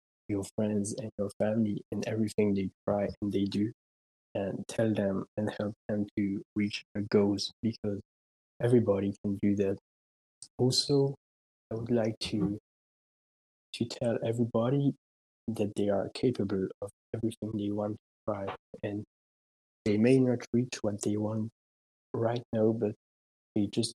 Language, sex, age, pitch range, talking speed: English, male, 20-39, 100-115 Hz, 145 wpm